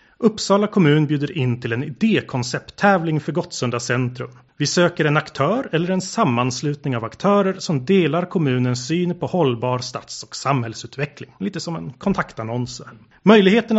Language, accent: Swedish, native